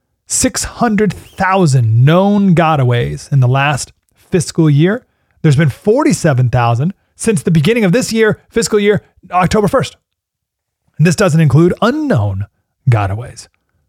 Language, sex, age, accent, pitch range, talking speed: English, male, 30-49, American, 120-165 Hz, 115 wpm